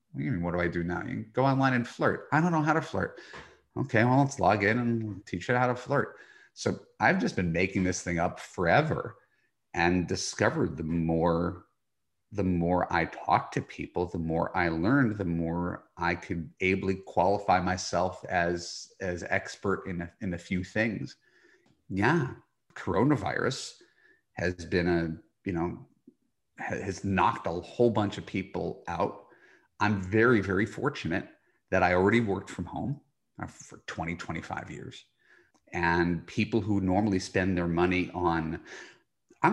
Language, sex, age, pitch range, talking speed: English, male, 30-49, 90-120 Hz, 160 wpm